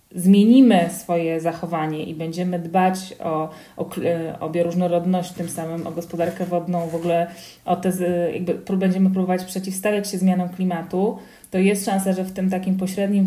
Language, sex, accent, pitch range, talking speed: Polish, female, native, 175-195 Hz, 160 wpm